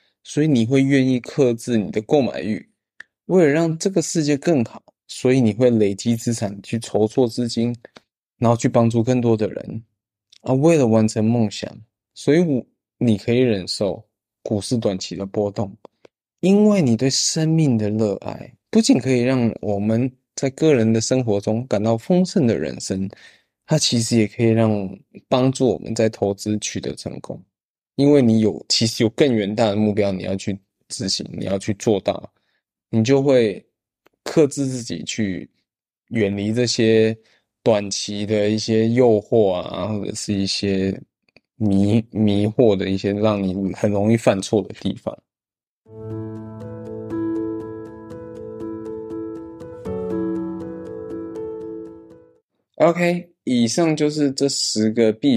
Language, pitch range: Chinese, 105-130 Hz